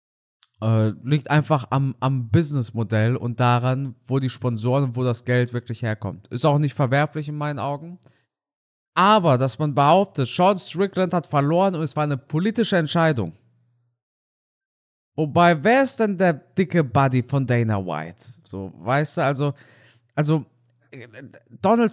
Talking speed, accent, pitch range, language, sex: 145 wpm, German, 120-165 Hz, German, male